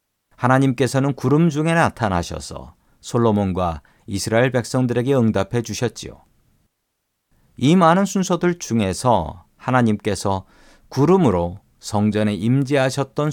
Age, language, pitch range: 40-59, Korean, 100-135 Hz